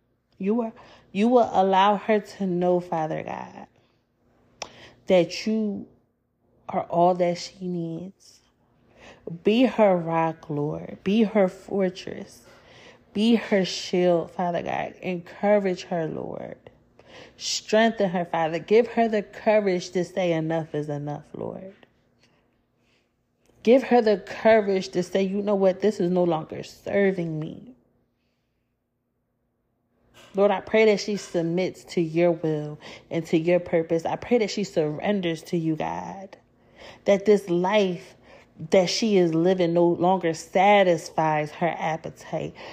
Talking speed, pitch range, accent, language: 130 wpm, 155-195 Hz, American, English